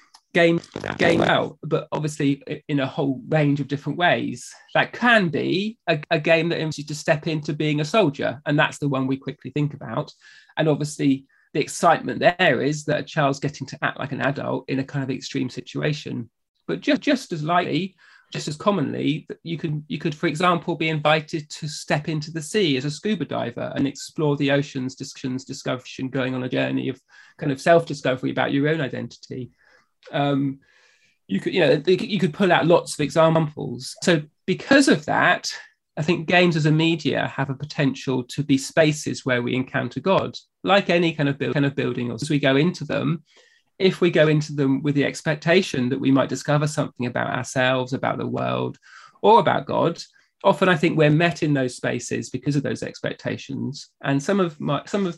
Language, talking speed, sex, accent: English, 195 wpm, male, British